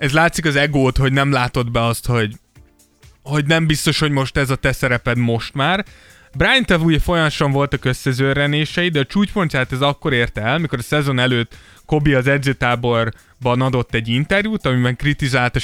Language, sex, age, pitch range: Hungarian, male, 20-39, 115-145 Hz